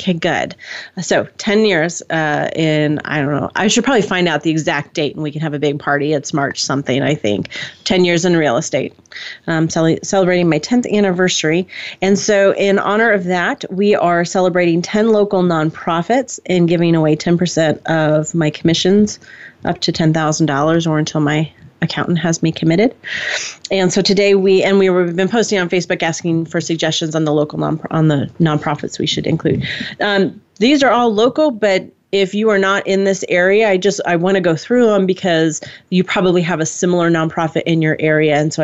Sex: female